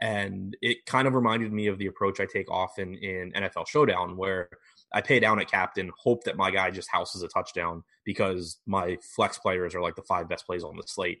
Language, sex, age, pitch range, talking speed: English, male, 20-39, 90-110 Hz, 225 wpm